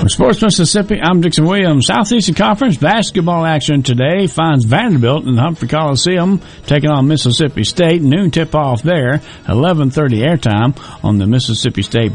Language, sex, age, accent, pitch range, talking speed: English, male, 60-79, American, 110-155 Hz, 150 wpm